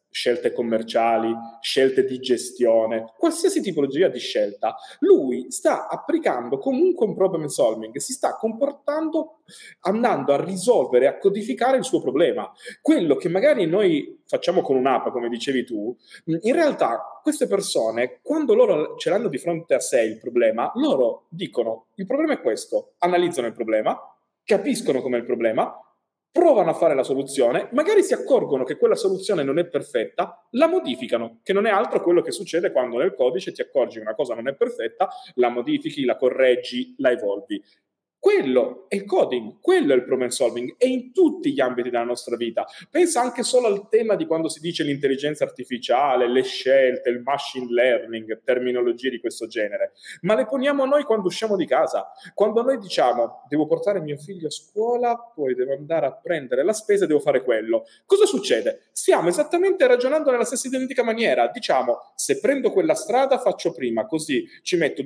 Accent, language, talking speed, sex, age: native, Italian, 175 wpm, male, 30-49